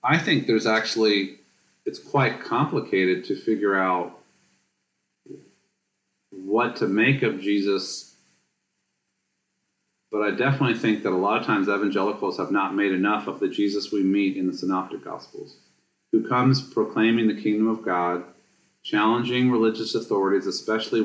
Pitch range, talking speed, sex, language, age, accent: 90-110 Hz, 140 wpm, male, English, 40-59, American